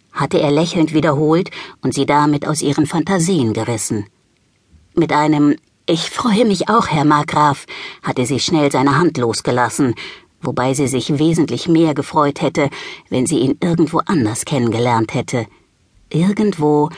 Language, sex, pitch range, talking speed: German, female, 130-170 Hz, 140 wpm